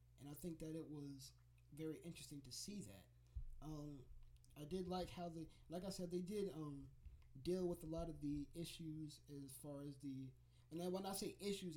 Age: 20-39